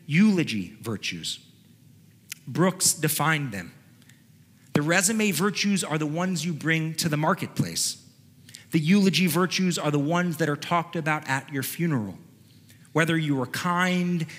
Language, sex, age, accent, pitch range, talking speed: English, male, 40-59, American, 145-195 Hz, 140 wpm